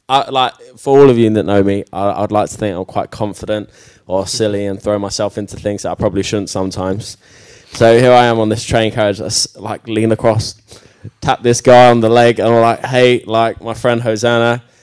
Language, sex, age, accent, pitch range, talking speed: English, male, 20-39, British, 100-120 Hz, 225 wpm